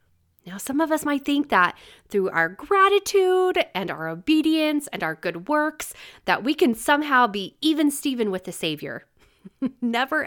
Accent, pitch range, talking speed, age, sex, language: American, 180-280 Hz, 160 wpm, 30-49, female, English